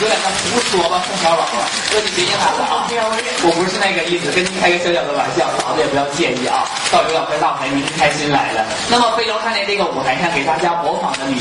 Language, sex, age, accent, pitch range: Chinese, male, 20-39, native, 165-215 Hz